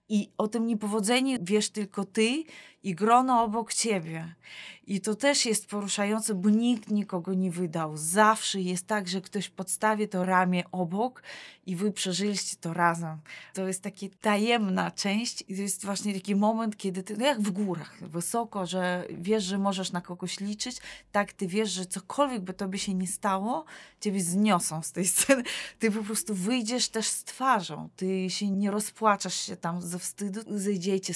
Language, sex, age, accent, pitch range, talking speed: Polish, female, 20-39, native, 180-215 Hz, 175 wpm